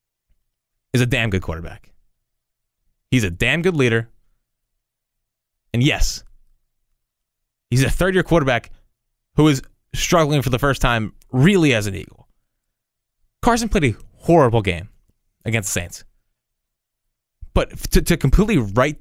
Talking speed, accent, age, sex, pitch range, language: 130 wpm, American, 20-39, male, 105-150 Hz, English